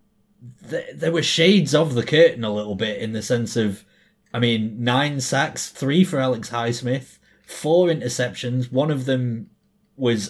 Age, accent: 20-39, British